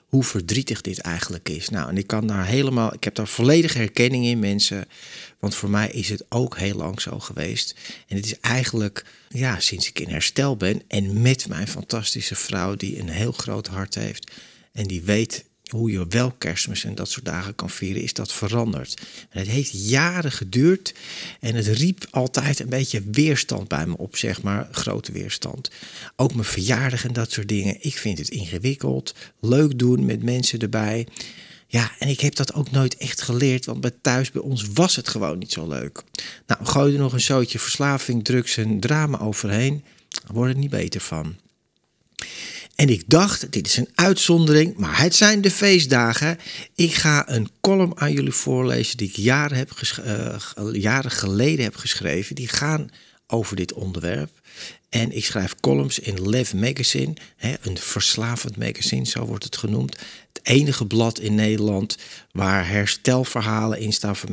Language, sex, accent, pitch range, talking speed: Dutch, male, Dutch, 105-130 Hz, 180 wpm